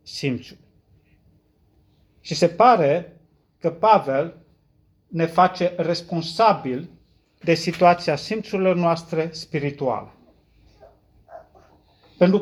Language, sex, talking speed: Romanian, male, 70 wpm